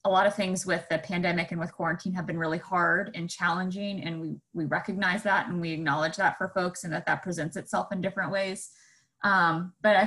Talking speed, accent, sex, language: 225 wpm, American, female, English